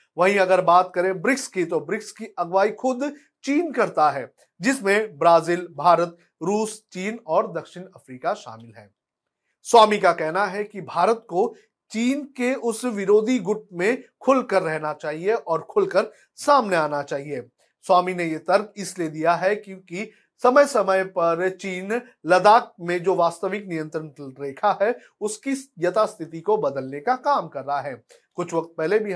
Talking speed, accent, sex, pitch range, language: 160 wpm, native, male, 160-225 Hz, Hindi